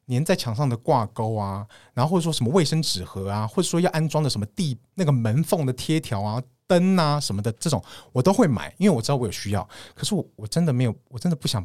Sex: male